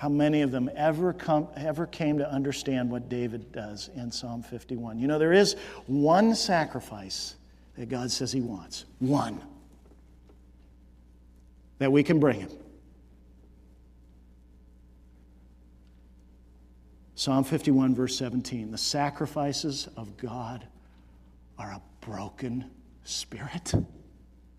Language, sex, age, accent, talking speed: English, male, 50-69, American, 110 wpm